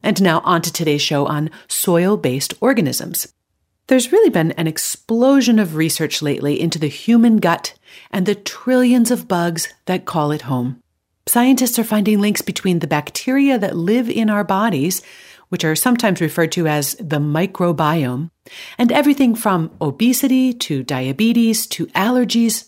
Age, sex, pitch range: 40-59, female, 165-245 Hz